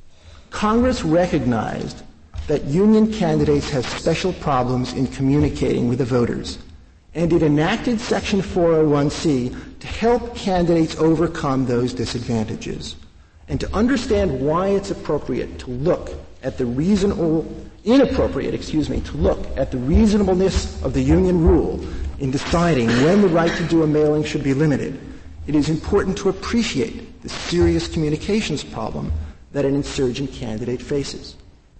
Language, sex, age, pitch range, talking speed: English, male, 50-69, 120-185 Hz, 140 wpm